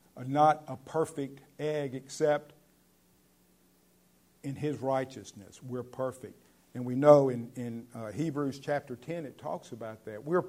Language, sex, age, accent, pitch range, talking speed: English, male, 50-69, American, 110-140 Hz, 135 wpm